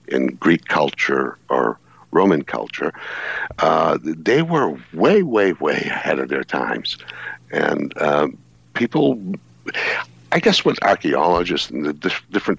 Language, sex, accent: English, male, American